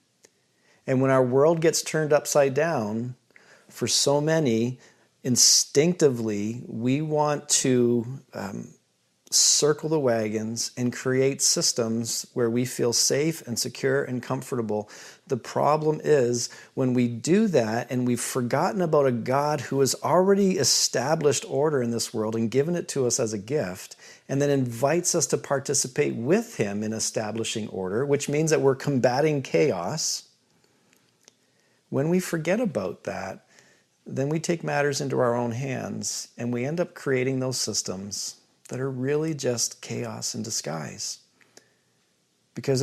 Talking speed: 145 wpm